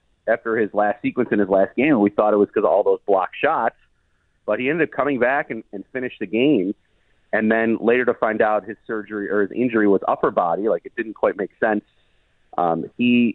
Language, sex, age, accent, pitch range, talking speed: English, male, 30-49, American, 105-135 Hz, 230 wpm